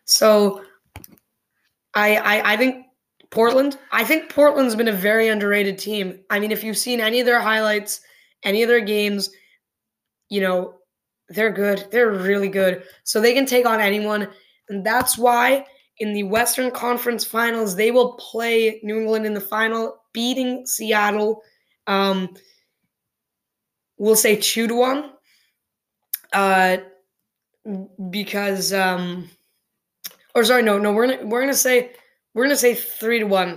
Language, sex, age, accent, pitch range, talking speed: English, female, 20-39, American, 200-240 Hz, 140 wpm